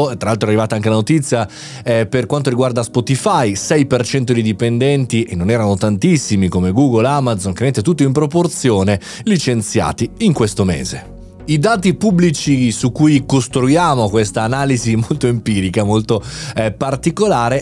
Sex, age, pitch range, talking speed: male, 20-39, 115-155 Hz, 145 wpm